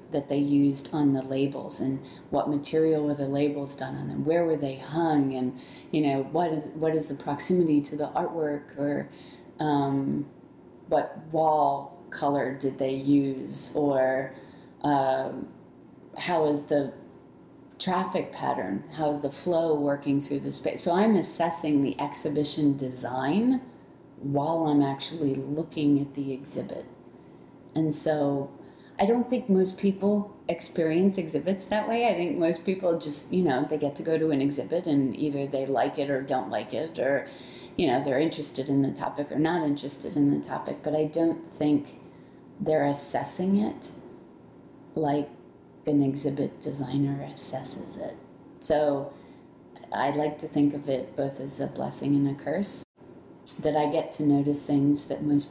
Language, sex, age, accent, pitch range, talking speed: English, female, 30-49, American, 140-160 Hz, 160 wpm